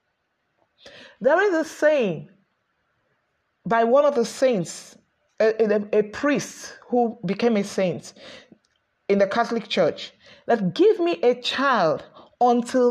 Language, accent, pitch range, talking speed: English, Nigerian, 225-305 Hz, 125 wpm